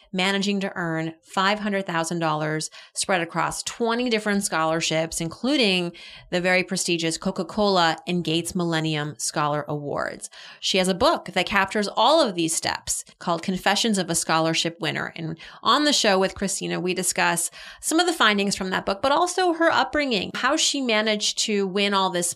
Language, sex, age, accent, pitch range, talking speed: English, female, 30-49, American, 175-220 Hz, 165 wpm